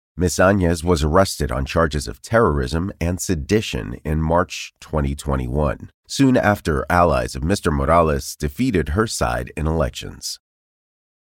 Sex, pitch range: male, 75-95 Hz